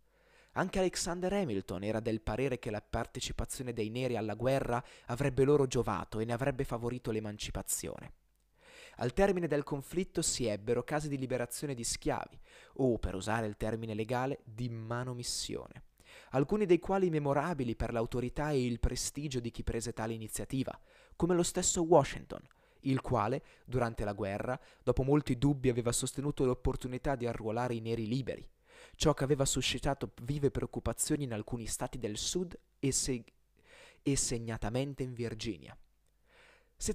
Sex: male